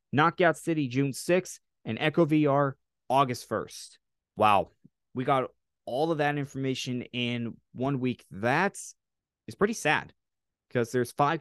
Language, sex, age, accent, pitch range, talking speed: English, male, 20-39, American, 115-150 Hz, 135 wpm